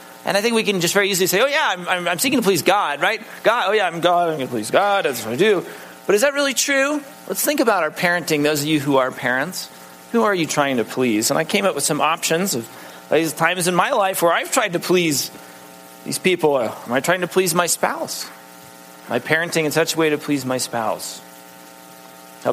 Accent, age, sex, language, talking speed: American, 30-49, male, English, 250 wpm